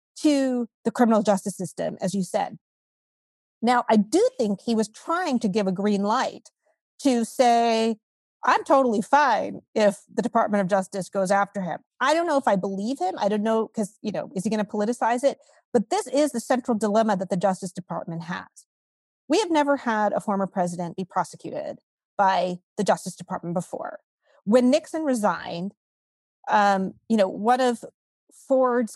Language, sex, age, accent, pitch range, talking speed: English, female, 40-59, American, 195-245 Hz, 175 wpm